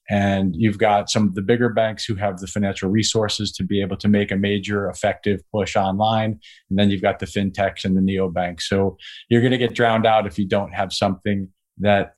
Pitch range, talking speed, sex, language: 100-115 Hz, 220 wpm, male, English